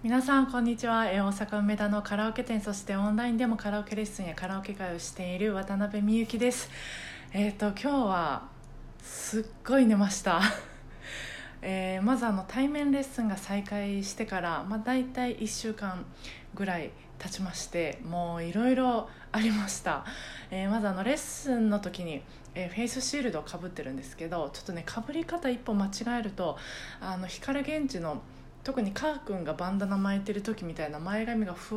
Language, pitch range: Japanese, 180-225 Hz